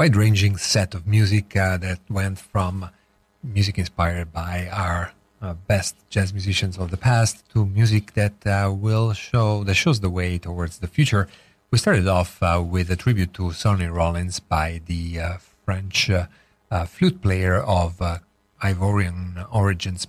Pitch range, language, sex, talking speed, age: 90-105 Hz, English, male, 165 wpm, 40-59